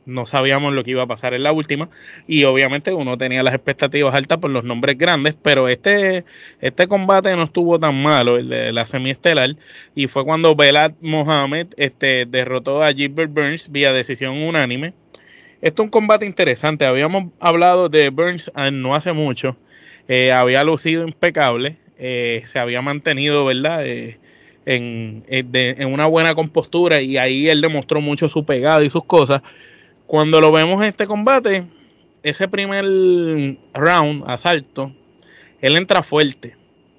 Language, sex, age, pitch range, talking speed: Spanish, male, 20-39, 135-170 Hz, 160 wpm